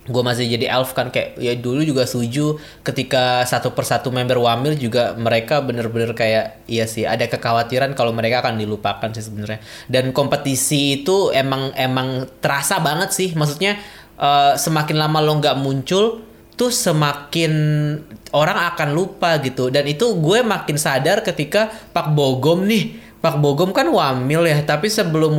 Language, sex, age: Indonesian, male, 20-39